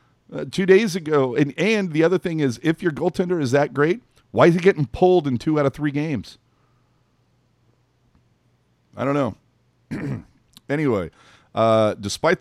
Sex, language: male, English